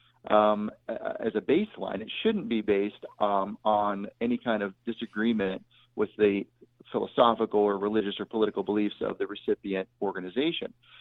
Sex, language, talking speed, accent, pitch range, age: male, English, 140 wpm, American, 105-120 Hz, 40-59